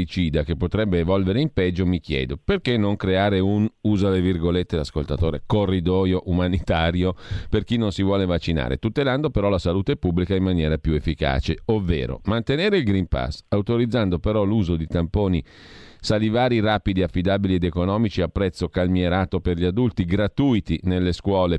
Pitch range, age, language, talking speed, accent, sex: 85-105 Hz, 40-59, Italian, 155 wpm, native, male